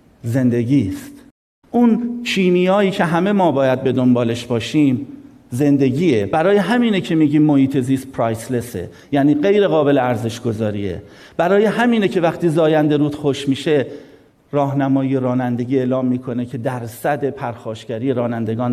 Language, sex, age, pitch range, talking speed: Persian, male, 50-69, 120-150 Hz, 130 wpm